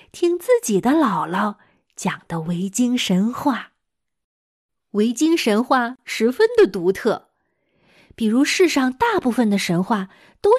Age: 20-39